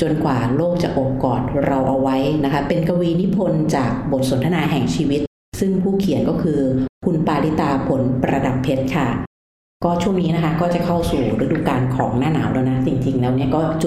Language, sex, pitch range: Thai, female, 140-185 Hz